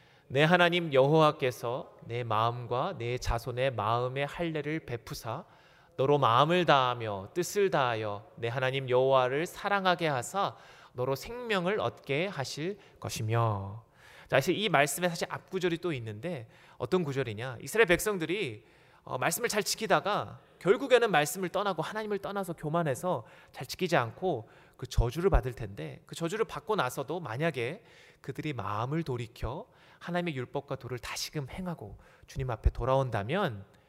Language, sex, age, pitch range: Korean, male, 30-49, 125-175 Hz